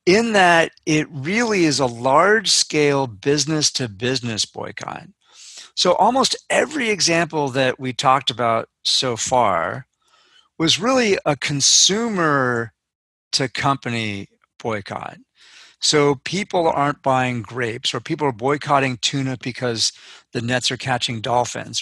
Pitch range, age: 125-160 Hz, 40-59